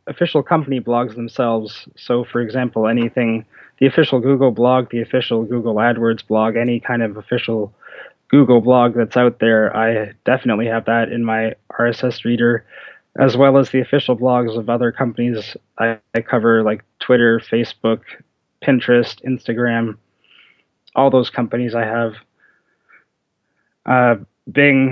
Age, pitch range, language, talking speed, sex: 20-39, 115-130 Hz, English, 140 wpm, male